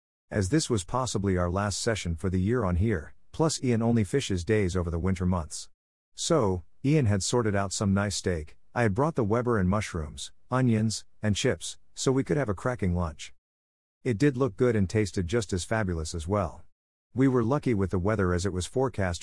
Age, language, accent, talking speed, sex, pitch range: 50-69, English, American, 210 wpm, male, 90-115 Hz